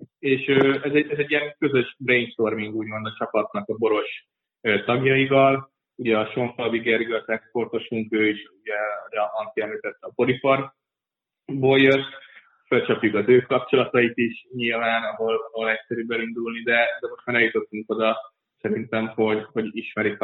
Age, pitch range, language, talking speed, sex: 20-39, 110-125 Hz, Hungarian, 140 wpm, male